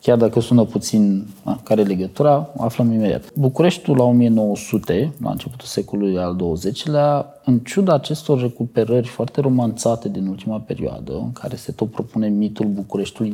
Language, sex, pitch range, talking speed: Romanian, male, 105-140 Hz, 145 wpm